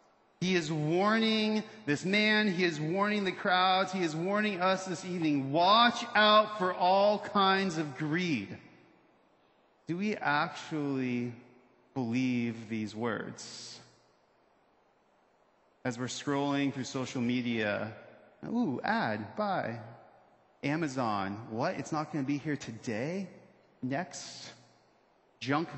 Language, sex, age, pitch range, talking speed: English, male, 40-59, 145-200 Hz, 115 wpm